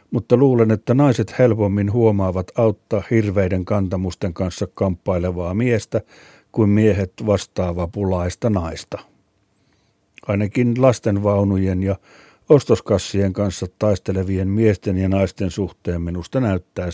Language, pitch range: Finnish, 95-110 Hz